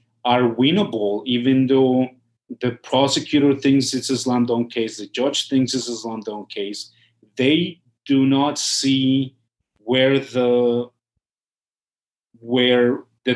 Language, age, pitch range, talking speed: English, 30-49, 115-130 Hz, 115 wpm